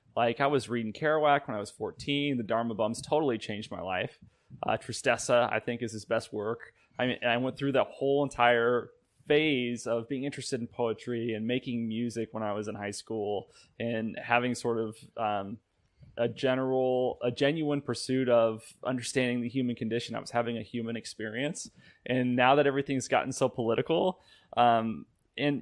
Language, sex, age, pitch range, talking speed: English, male, 20-39, 115-130 Hz, 180 wpm